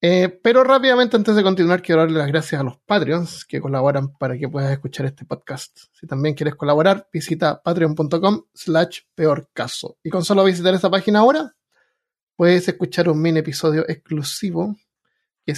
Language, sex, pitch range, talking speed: Spanish, male, 145-180 Hz, 165 wpm